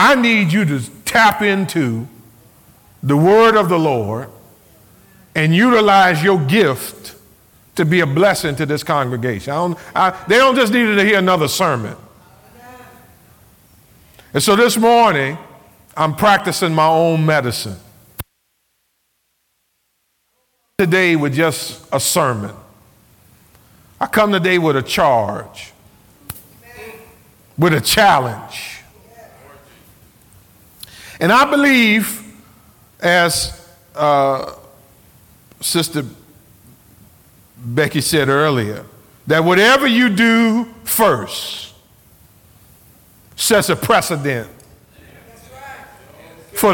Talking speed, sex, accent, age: 100 wpm, male, American, 50-69